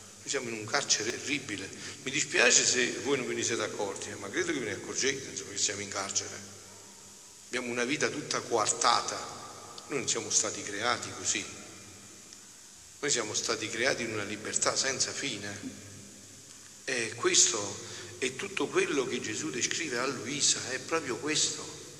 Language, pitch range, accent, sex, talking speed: Italian, 105-145 Hz, native, male, 155 wpm